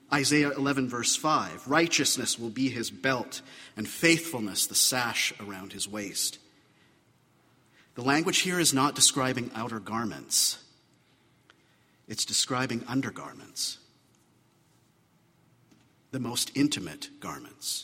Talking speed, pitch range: 105 wpm, 125-160 Hz